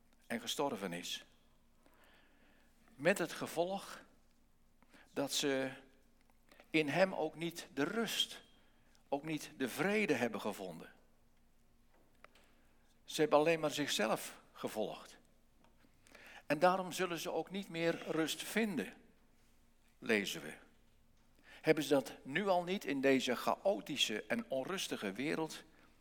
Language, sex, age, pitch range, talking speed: English, male, 60-79, 150-195 Hz, 115 wpm